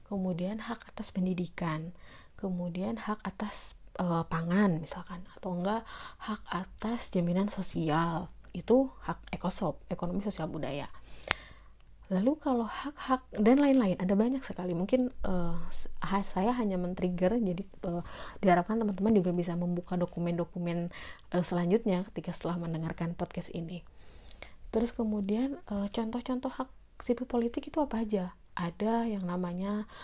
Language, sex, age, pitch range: Indonesian, female, 30-49, 175-210 Hz